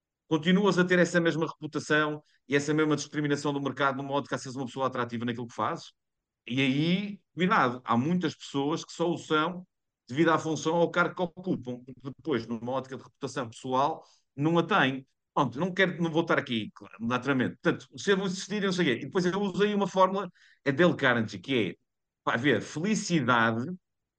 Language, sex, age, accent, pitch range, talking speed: Portuguese, male, 50-69, Portuguese, 130-180 Hz, 185 wpm